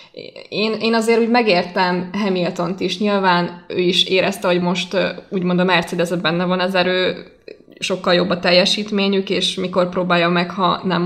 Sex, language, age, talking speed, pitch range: female, Hungarian, 20-39, 165 wpm, 170-190 Hz